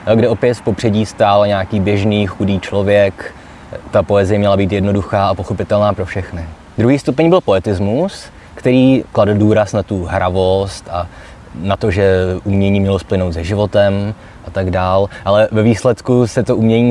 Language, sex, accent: Czech, male, native